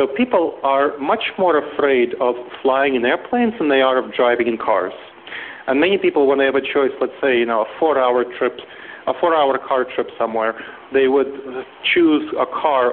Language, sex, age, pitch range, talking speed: English, male, 40-59, 125-155 Hz, 195 wpm